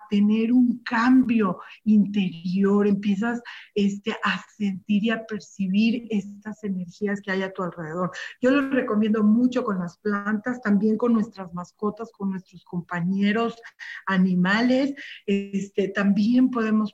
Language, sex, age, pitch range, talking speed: Spanish, female, 40-59, 195-230 Hz, 130 wpm